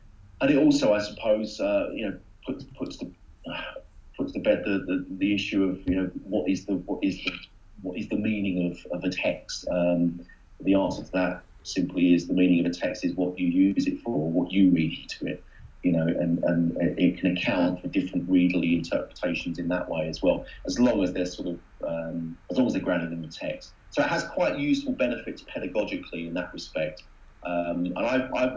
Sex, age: male, 30-49